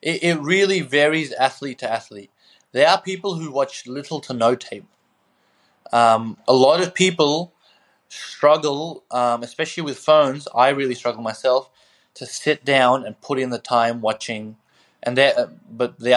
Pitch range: 125-150 Hz